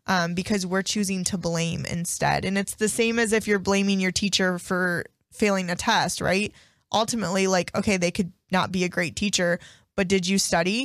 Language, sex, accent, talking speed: English, female, American, 200 wpm